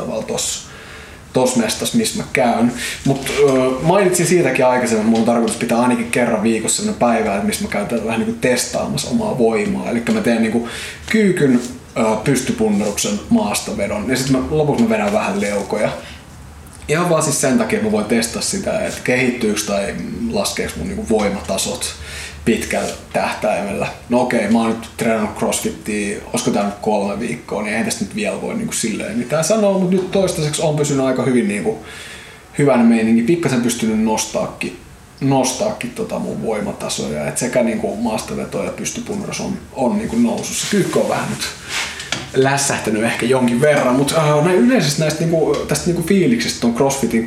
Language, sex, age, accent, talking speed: Finnish, male, 20-39, native, 170 wpm